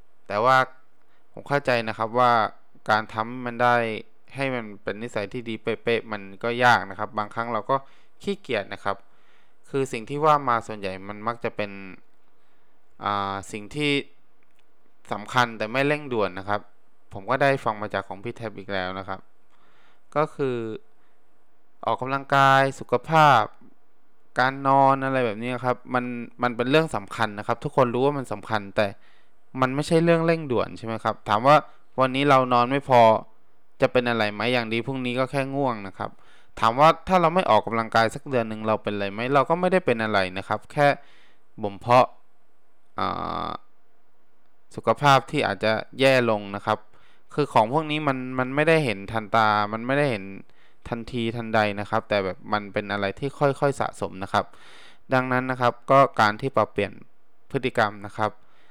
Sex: male